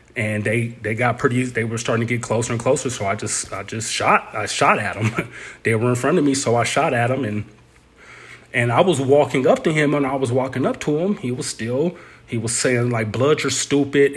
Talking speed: 245 wpm